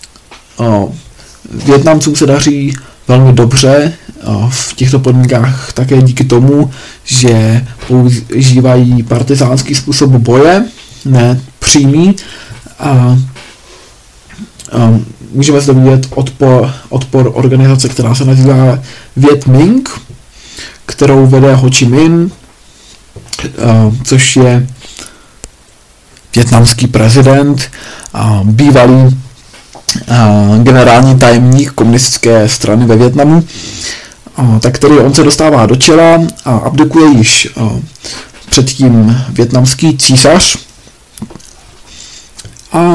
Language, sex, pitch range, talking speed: Czech, male, 120-140 Hz, 90 wpm